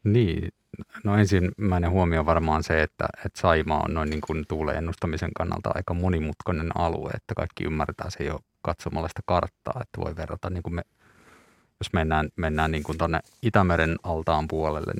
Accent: native